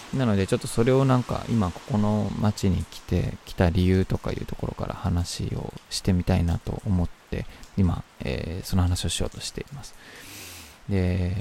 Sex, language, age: male, Japanese, 20-39